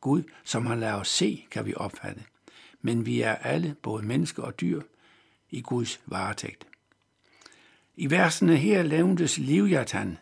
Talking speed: 145 wpm